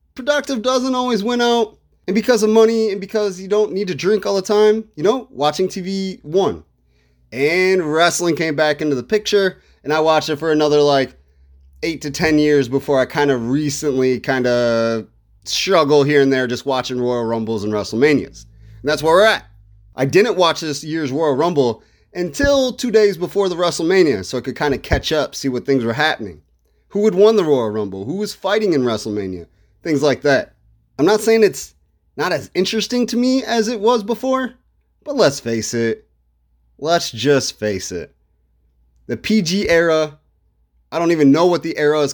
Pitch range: 115-190 Hz